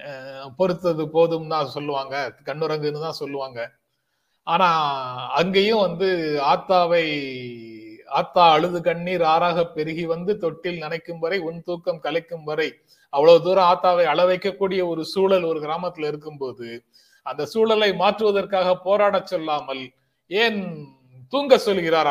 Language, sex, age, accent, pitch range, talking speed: Tamil, male, 30-49, native, 150-190 Hz, 110 wpm